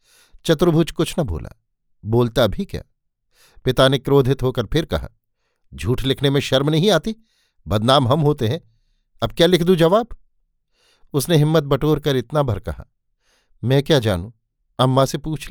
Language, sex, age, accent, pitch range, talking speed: Hindi, male, 50-69, native, 115-150 Hz, 160 wpm